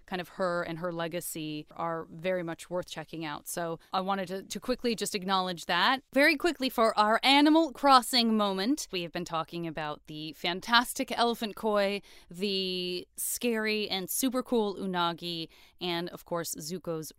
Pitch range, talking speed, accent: 170-220 Hz, 165 wpm, American